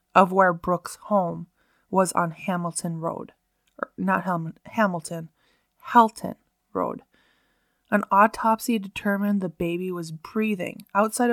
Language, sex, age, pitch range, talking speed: English, female, 20-39, 180-220 Hz, 115 wpm